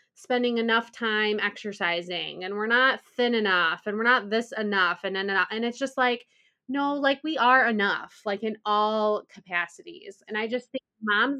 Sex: female